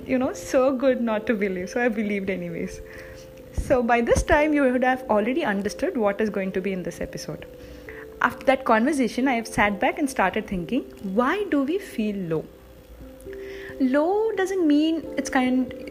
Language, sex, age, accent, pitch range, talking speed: English, female, 20-39, Indian, 185-250 Hz, 180 wpm